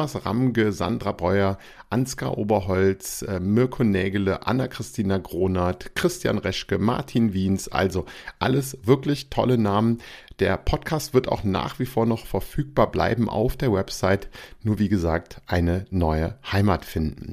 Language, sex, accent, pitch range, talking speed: German, male, German, 95-120 Hz, 130 wpm